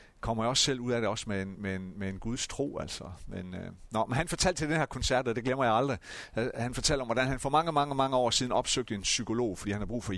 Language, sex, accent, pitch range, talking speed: Danish, male, native, 100-120 Hz, 300 wpm